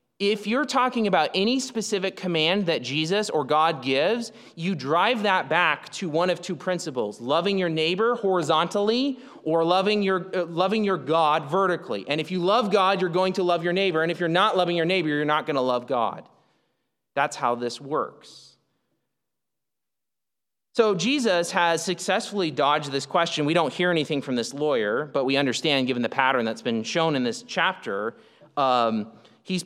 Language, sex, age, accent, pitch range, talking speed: English, male, 30-49, American, 150-200 Hz, 180 wpm